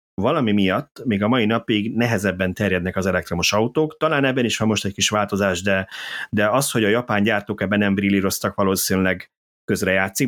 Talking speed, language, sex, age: 185 wpm, Hungarian, male, 30-49